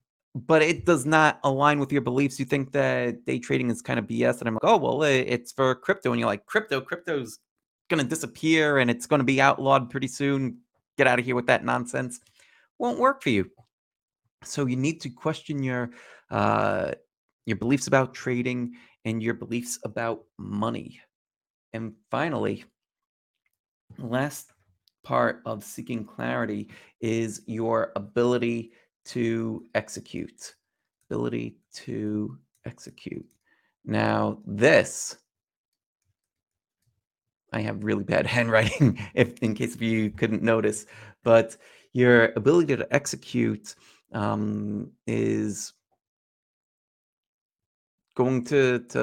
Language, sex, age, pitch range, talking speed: English, male, 30-49, 110-135 Hz, 130 wpm